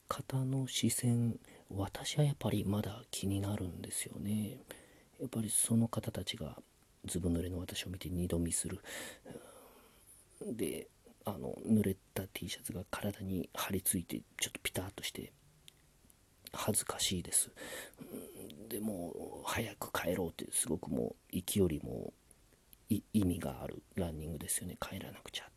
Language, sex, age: Japanese, male, 40-59